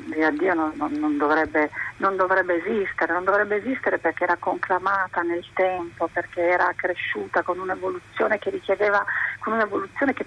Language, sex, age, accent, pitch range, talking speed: Italian, female, 40-59, native, 165-200 Hz, 145 wpm